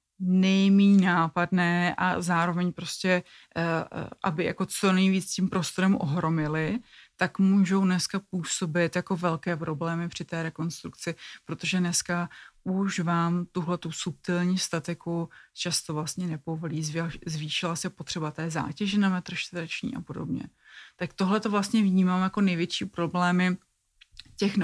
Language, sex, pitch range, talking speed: Czech, female, 165-190 Hz, 125 wpm